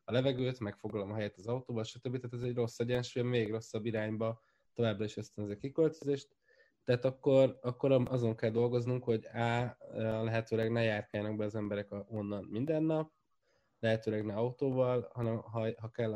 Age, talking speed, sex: 20-39, 165 wpm, male